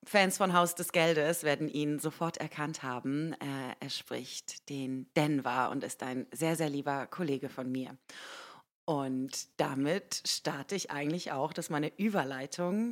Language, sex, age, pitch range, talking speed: German, female, 30-49, 140-190 Hz, 155 wpm